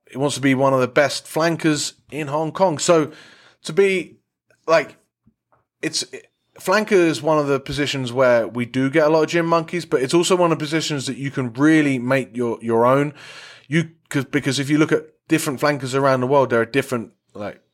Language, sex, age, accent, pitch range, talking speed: English, male, 20-39, British, 125-155 Hz, 215 wpm